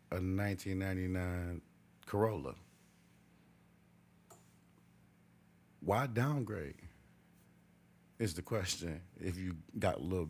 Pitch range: 85-105 Hz